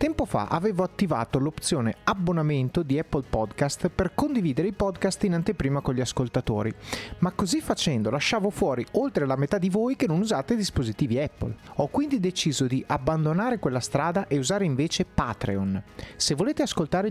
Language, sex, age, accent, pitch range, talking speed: Italian, male, 30-49, native, 135-210 Hz, 165 wpm